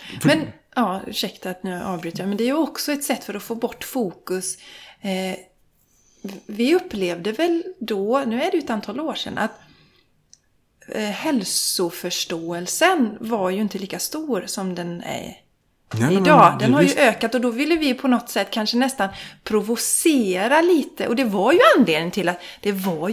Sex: female